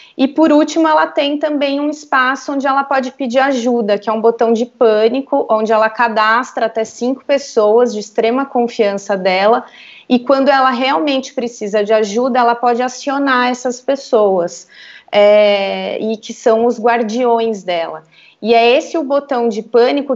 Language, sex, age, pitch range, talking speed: Portuguese, female, 30-49, 215-265 Hz, 160 wpm